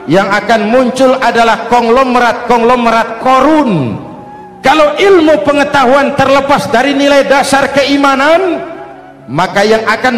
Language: Indonesian